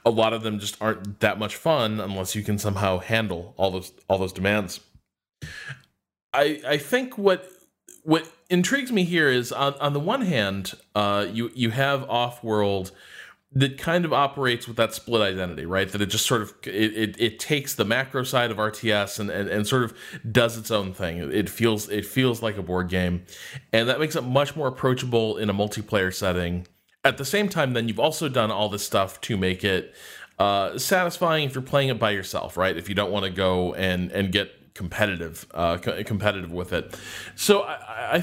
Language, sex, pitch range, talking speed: English, male, 100-140 Hz, 200 wpm